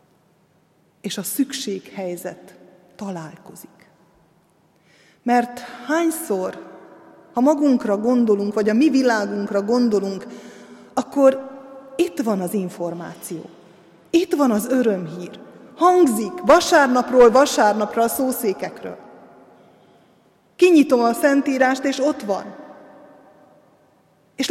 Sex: female